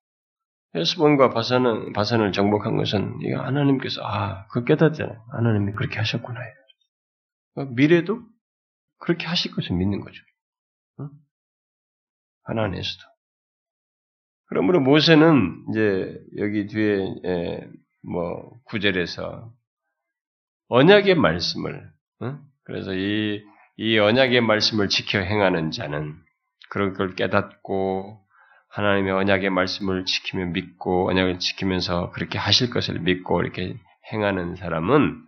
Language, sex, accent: Korean, male, native